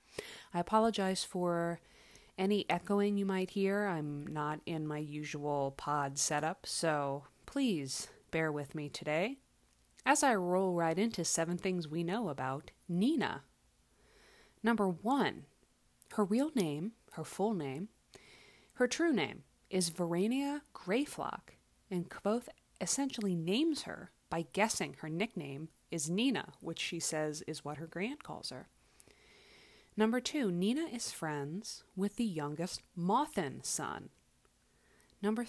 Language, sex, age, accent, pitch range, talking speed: English, female, 30-49, American, 160-230 Hz, 130 wpm